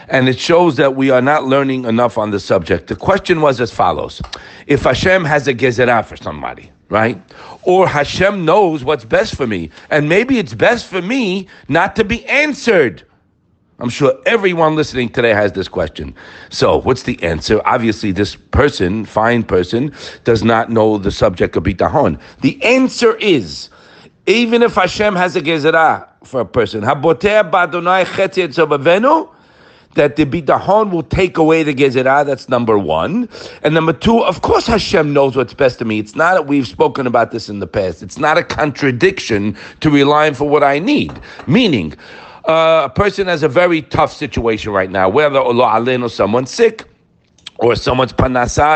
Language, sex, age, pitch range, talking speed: English, male, 60-79, 120-180 Hz, 175 wpm